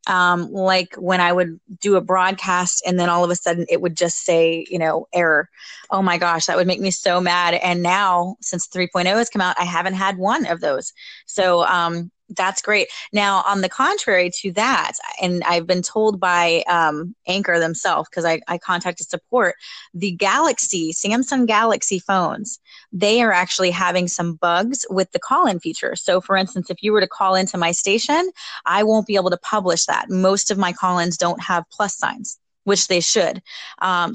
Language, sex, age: English, female, 30-49